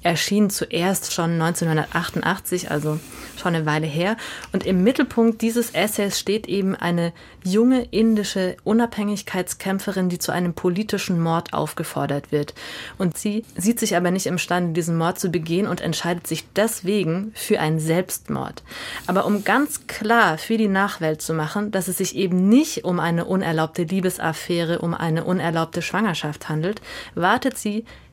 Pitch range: 170-210 Hz